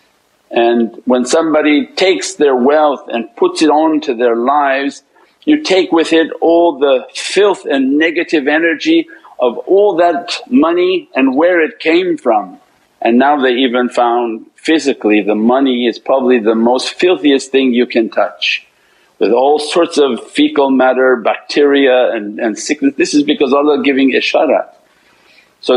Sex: male